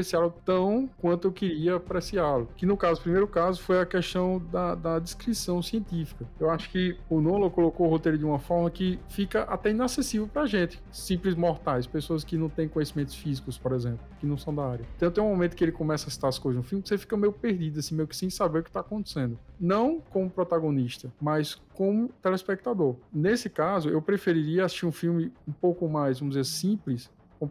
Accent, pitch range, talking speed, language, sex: Brazilian, 155-195 Hz, 210 wpm, Portuguese, male